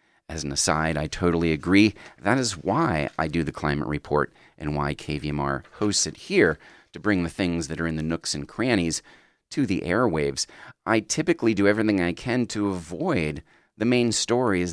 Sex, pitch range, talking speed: male, 75-110 Hz, 185 wpm